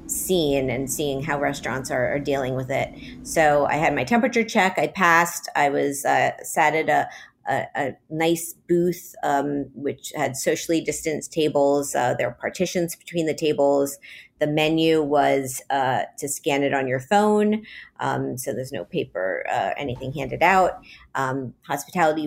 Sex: female